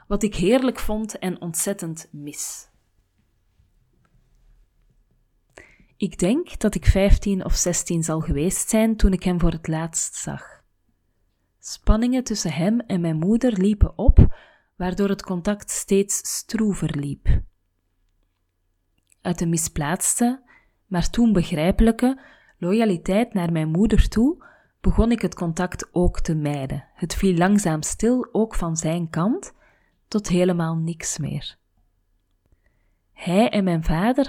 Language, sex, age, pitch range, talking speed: Dutch, female, 30-49, 145-205 Hz, 125 wpm